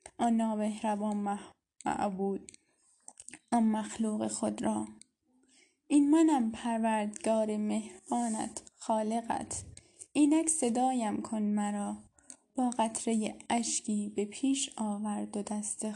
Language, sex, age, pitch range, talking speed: Persian, female, 10-29, 205-255 Hz, 90 wpm